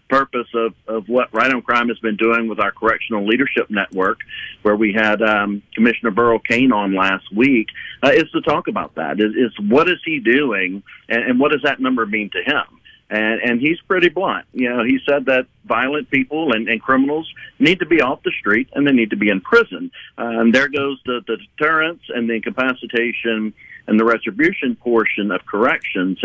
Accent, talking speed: American, 205 wpm